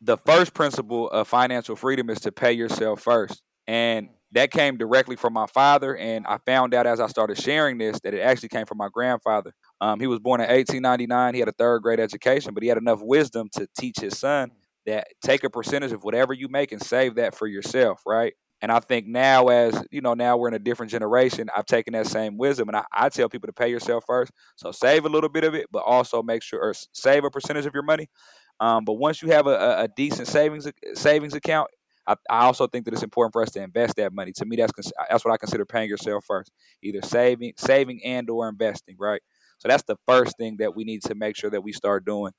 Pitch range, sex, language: 110-135 Hz, male, English